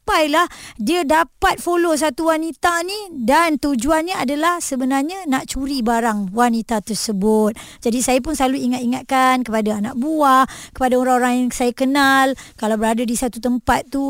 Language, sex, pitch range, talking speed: Malay, male, 250-320 Hz, 150 wpm